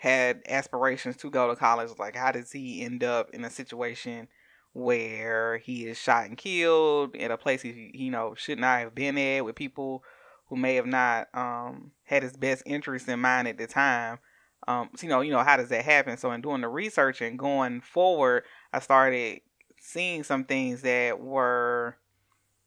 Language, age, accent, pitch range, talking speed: English, 20-39, American, 120-140 Hz, 190 wpm